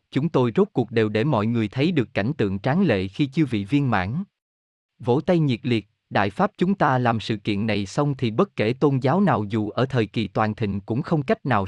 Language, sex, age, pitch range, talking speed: Vietnamese, male, 20-39, 110-165 Hz, 245 wpm